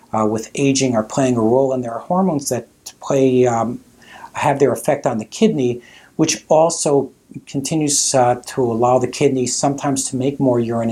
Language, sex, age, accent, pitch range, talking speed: English, male, 50-69, American, 120-145 Hz, 180 wpm